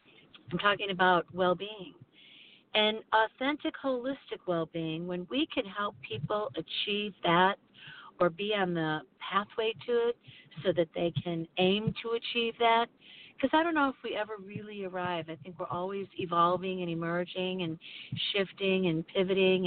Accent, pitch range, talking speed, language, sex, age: American, 170-205 Hz, 155 wpm, English, female, 50-69